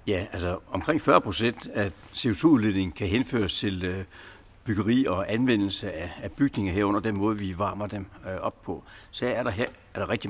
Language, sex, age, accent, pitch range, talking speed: Danish, male, 60-79, native, 95-115 Hz, 170 wpm